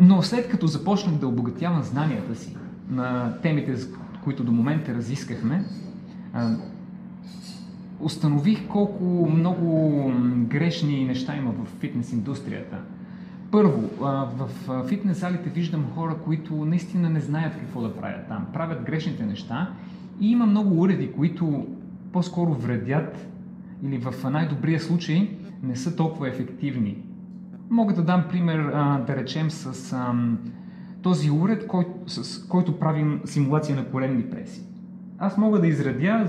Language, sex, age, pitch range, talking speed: Bulgarian, male, 30-49, 145-195 Hz, 125 wpm